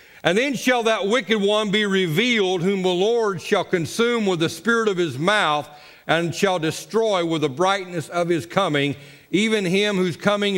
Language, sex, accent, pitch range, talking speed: English, male, American, 150-200 Hz, 180 wpm